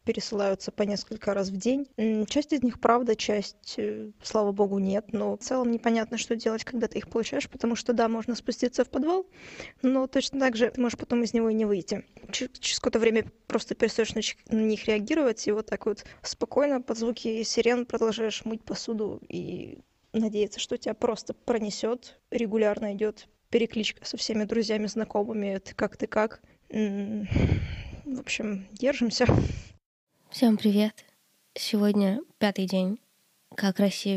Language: Russian